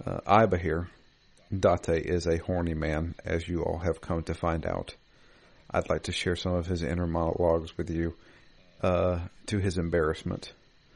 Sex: male